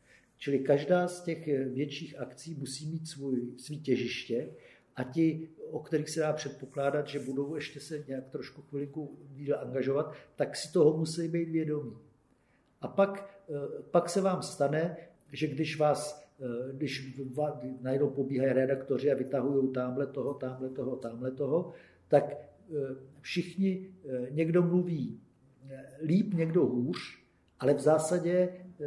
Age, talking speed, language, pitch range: 50-69, 135 wpm, Czech, 130-155 Hz